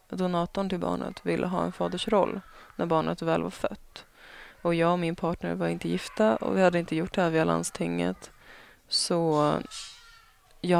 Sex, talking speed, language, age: female, 170 wpm, Swedish, 20-39